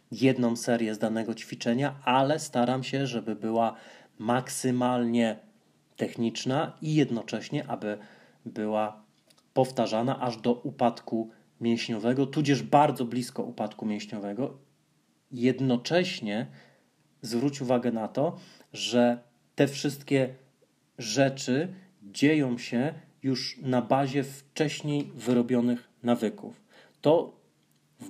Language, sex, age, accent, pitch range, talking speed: Polish, male, 30-49, native, 120-140 Hz, 95 wpm